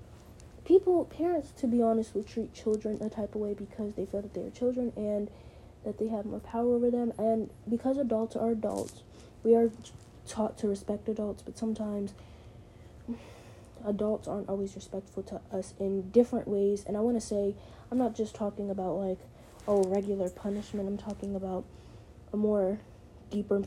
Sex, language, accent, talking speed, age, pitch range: female, English, American, 175 wpm, 20-39, 200-225 Hz